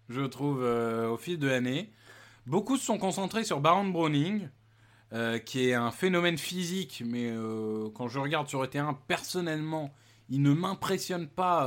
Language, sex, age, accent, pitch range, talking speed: French, male, 20-39, French, 120-175 Hz, 175 wpm